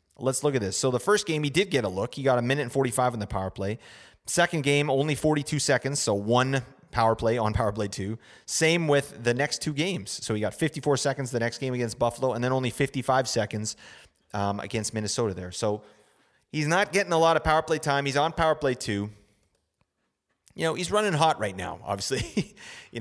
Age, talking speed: 30-49, 220 wpm